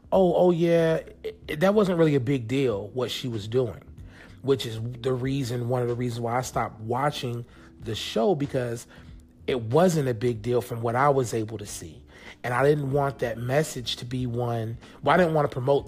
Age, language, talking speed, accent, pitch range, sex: 30-49, English, 215 wpm, American, 110-135 Hz, male